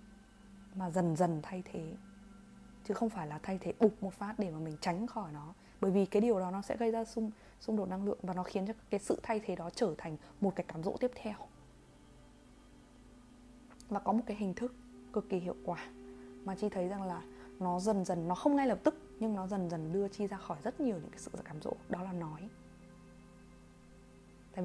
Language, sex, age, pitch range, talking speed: Vietnamese, female, 20-39, 170-220 Hz, 225 wpm